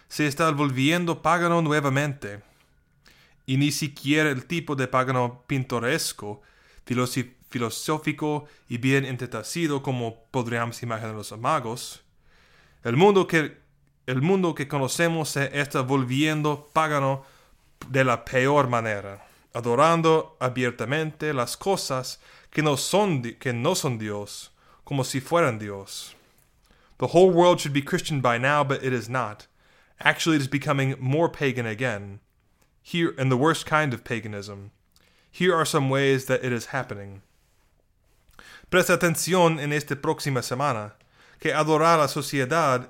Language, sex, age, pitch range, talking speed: English, male, 30-49, 125-155 Hz, 135 wpm